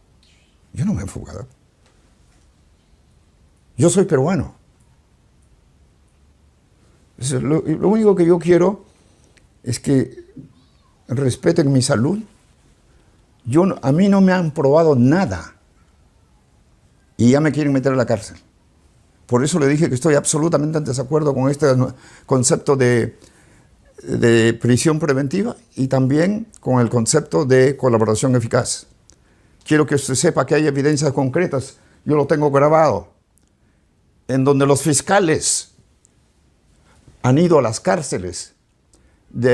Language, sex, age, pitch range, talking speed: Spanish, male, 60-79, 105-155 Hz, 120 wpm